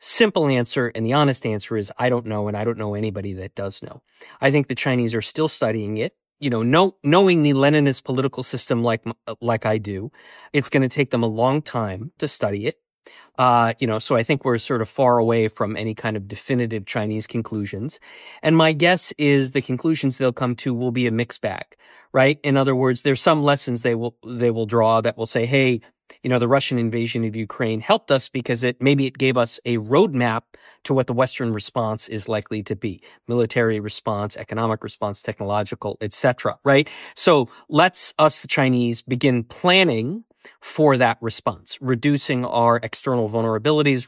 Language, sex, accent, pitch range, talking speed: English, male, American, 110-135 Hz, 195 wpm